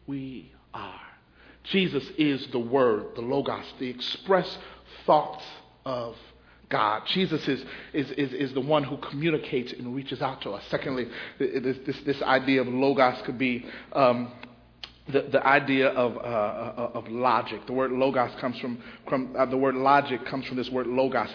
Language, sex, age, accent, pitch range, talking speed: English, male, 40-59, American, 130-175 Hz, 165 wpm